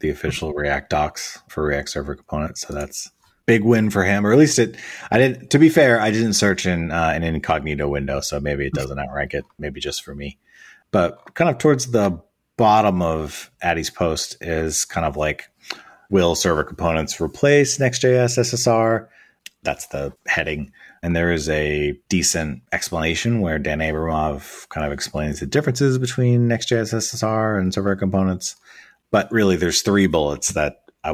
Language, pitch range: English, 75-105 Hz